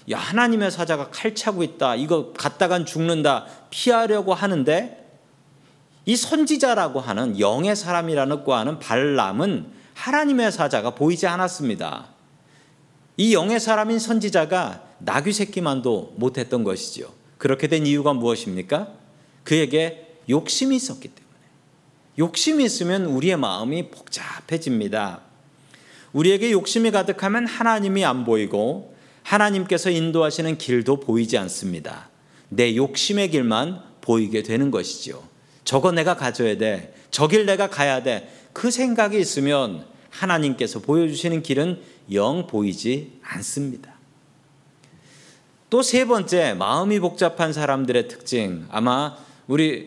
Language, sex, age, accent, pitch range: Korean, male, 40-59, native, 135-190 Hz